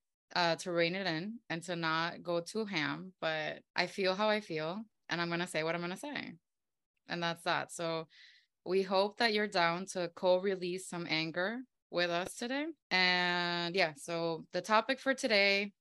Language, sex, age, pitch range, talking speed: English, female, 20-39, 170-195 Hz, 190 wpm